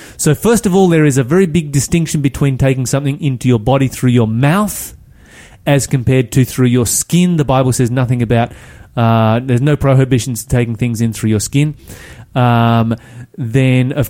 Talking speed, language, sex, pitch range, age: 185 wpm, English, male, 120-155 Hz, 30-49